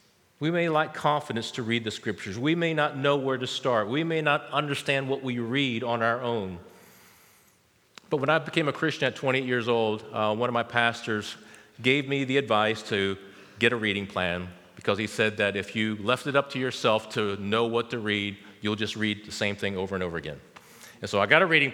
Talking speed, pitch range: 225 wpm, 110-150 Hz